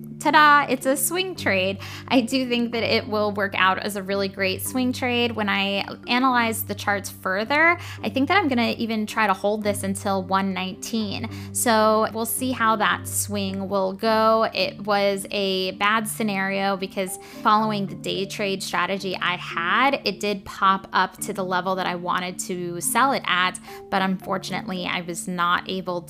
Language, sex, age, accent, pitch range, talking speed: English, female, 10-29, American, 190-225 Hz, 180 wpm